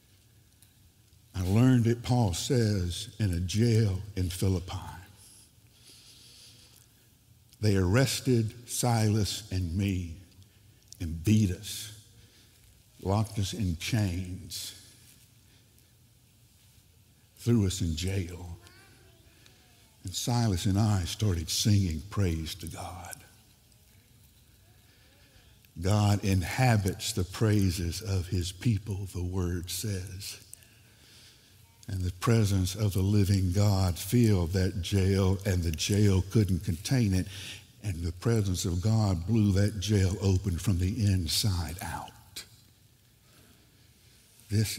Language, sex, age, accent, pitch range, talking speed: English, male, 60-79, American, 95-110 Hz, 100 wpm